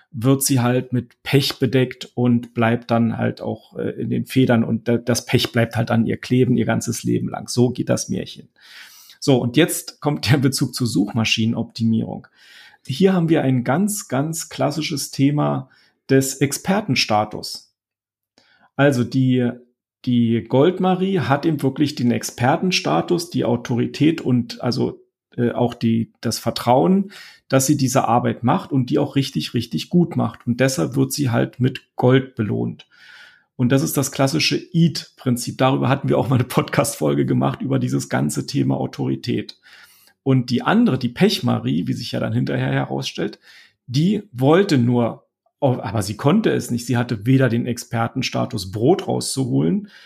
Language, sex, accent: German, male, German